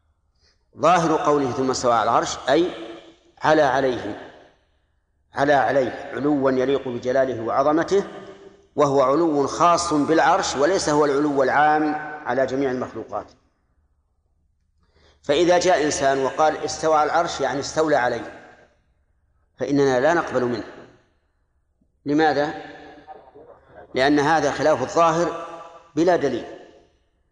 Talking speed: 105 wpm